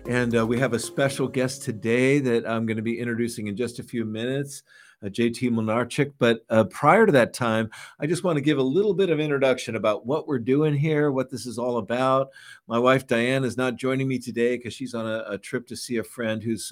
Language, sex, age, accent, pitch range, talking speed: English, male, 50-69, American, 120-145 Hz, 240 wpm